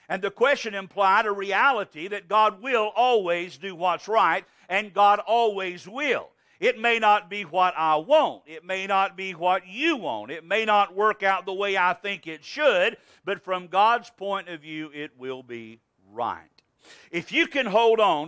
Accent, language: American, English